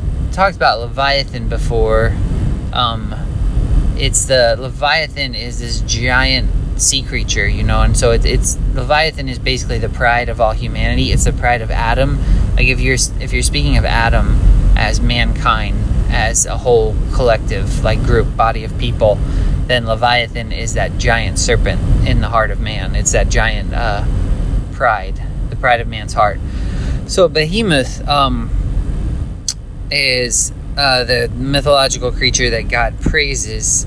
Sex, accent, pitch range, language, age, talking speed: male, American, 105-130 Hz, English, 30-49, 145 wpm